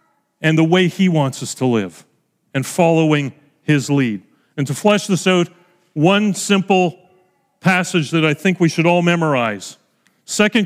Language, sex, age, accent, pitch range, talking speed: English, male, 40-59, American, 160-210 Hz, 160 wpm